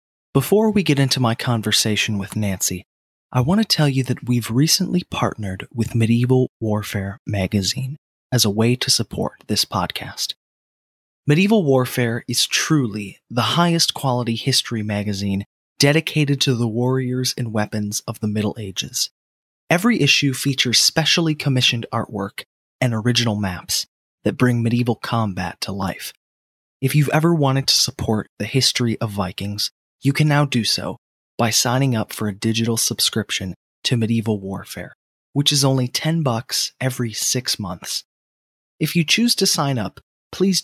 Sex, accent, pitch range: male, American, 105-135 Hz